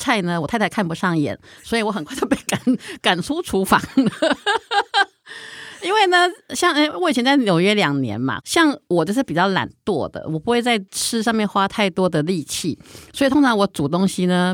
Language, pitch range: Chinese, 160-230 Hz